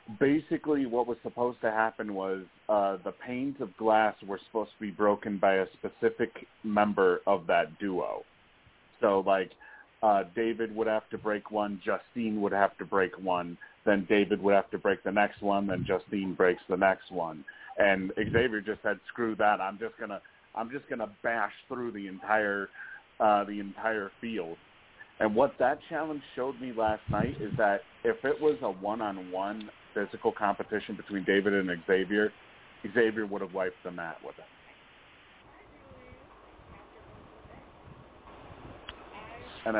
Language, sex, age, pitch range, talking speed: English, male, 30-49, 100-115 Hz, 160 wpm